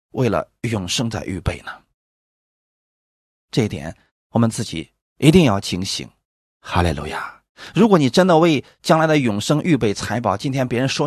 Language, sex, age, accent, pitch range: Chinese, male, 30-49, native, 100-155 Hz